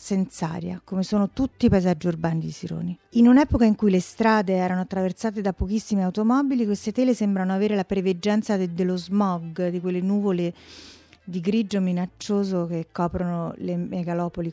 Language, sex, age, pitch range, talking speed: Italian, female, 40-59, 180-220 Hz, 165 wpm